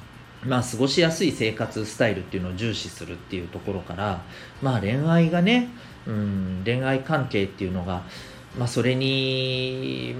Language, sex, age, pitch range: Japanese, male, 40-59, 95-130 Hz